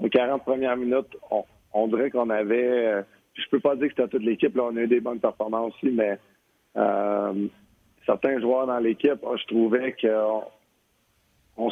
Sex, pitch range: male, 110-130 Hz